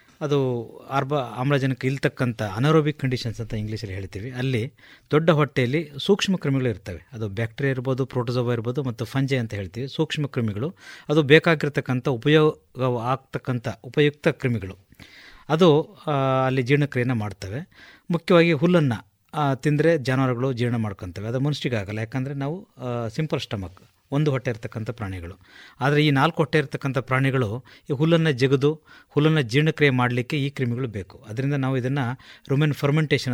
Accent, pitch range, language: native, 120-150 Hz, Kannada